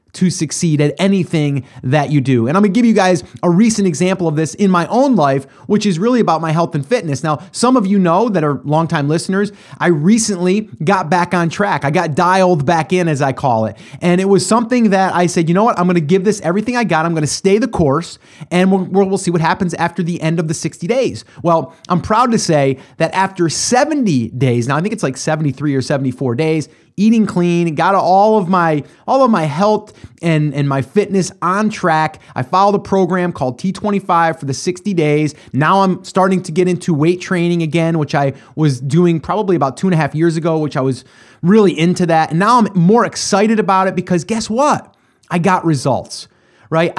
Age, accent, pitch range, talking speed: 30-49, American, 150-195 Hz, 220 wpm